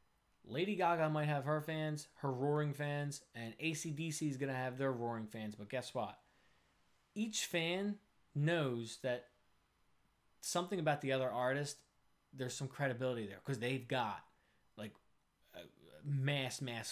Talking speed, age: 145 wpm, 20-39